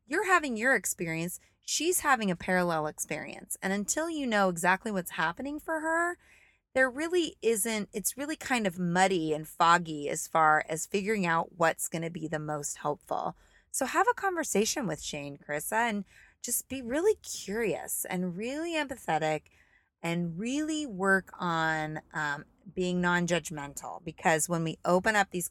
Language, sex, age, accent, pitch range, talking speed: English, female, 20-39, American, 160-250 Hz, 160 wpm